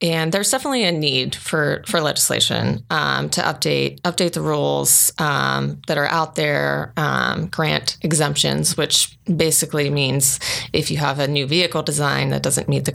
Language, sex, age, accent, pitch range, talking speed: English, female, 30-49, American, 135-165 Hz, 165 wpm